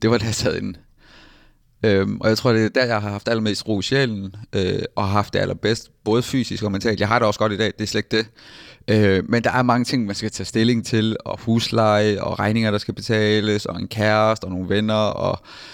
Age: 30-49